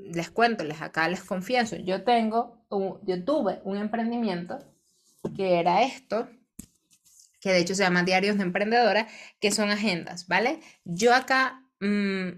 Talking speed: 150 wpm